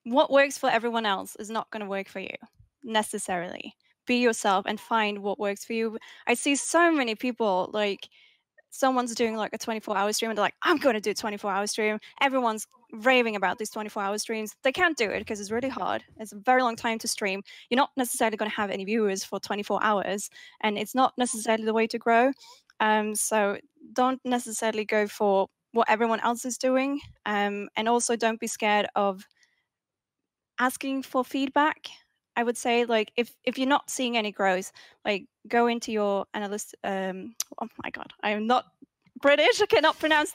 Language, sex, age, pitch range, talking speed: English, female, 10-29, 205-250 Hz, 195 wpm